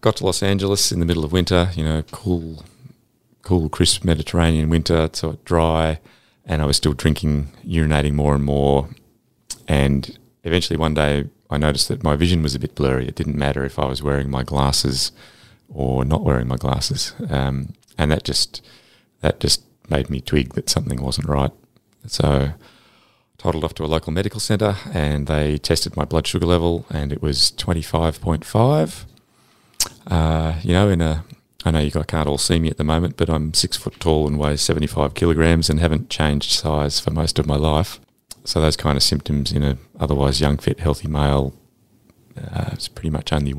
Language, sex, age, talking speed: English, male, 30-49, 195 wpm